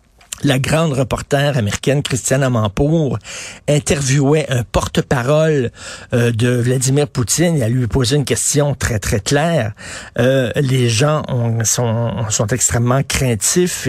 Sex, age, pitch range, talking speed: male, 50-69, 120-160 Hz, 130 wpm